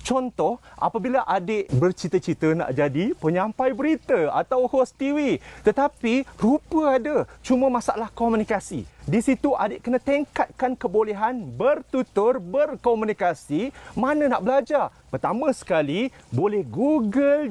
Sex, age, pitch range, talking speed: male, 30-49, 190-270 Hz, 110 wpm